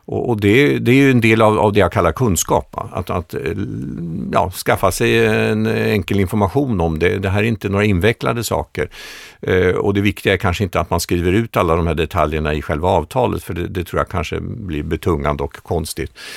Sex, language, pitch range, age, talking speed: male, Swedish, 80-105 Hz, 50-69, 205 wpm